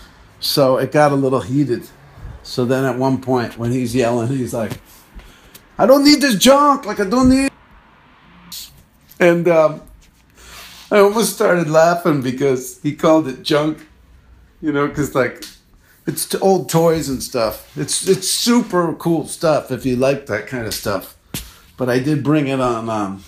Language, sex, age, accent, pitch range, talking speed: English, male, 50-69, American, 115-165 Hz, 170 wpm